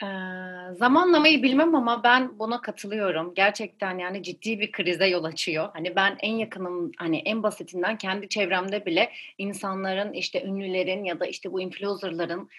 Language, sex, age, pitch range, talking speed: Turkish, female, 30-49, 195-255 Hz, 155 wpm